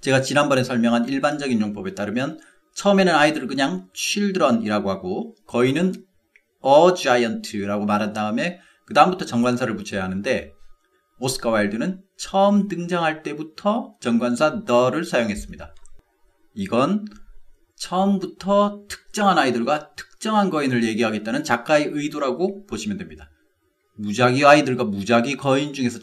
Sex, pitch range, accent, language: male, 120-195 Hz, native, Korean